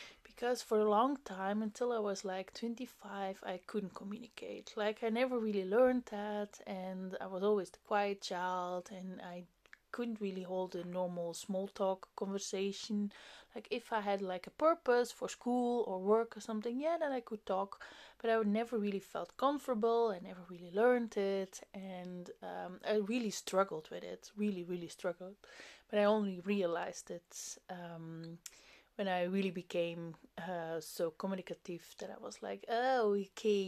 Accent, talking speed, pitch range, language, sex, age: Dutch, 165 wpm, 180-215 Hz, English, female, 20-39